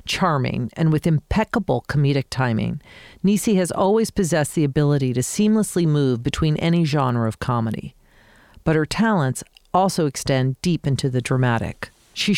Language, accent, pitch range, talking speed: English, American, 130-180 Hz, 145 wpm